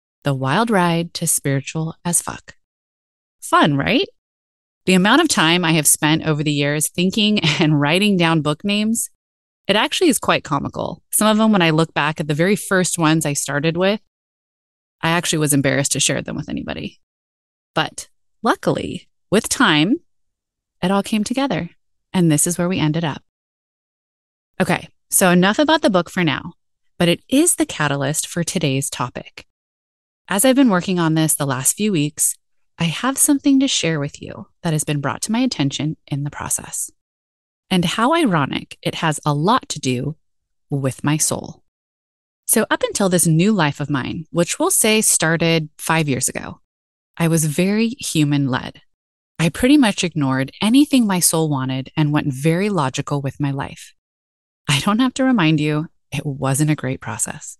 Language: English